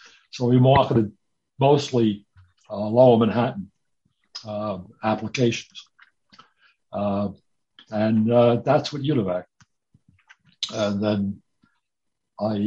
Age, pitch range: 60-79, 105-125 Hz